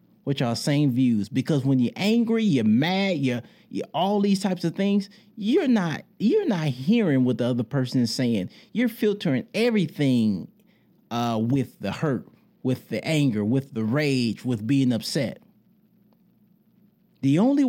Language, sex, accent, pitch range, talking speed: English, male, American, 145-215 Hz, 155 wpm